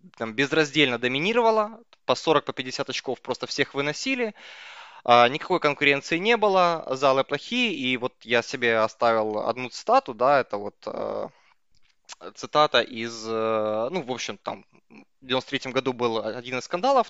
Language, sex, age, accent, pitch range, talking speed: Russian, male, 20-39, native, 130-165 Hz, 140 wpm